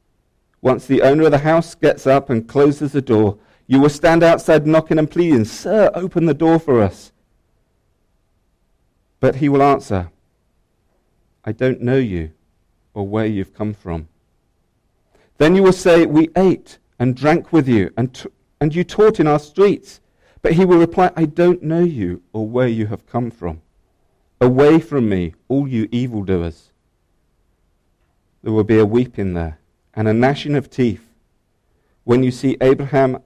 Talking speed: 165 wpm